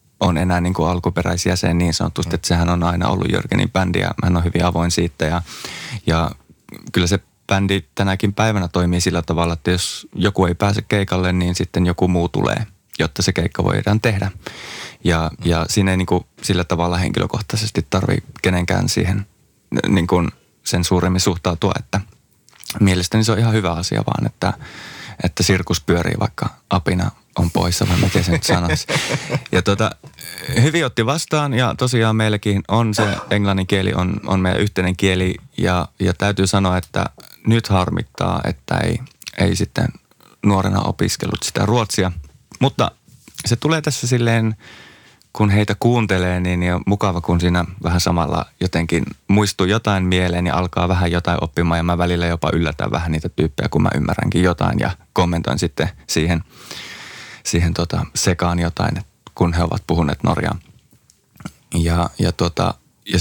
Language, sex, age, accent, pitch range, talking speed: Finnish, male, 20-39, native, 85-105 Hz, 160 wpm